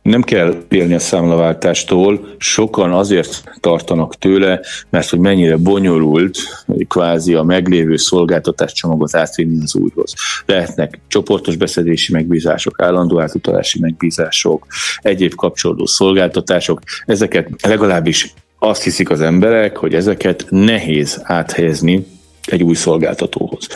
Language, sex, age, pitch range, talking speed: Hungarian, male, 30-49, 80-95 Hz, 110 wpm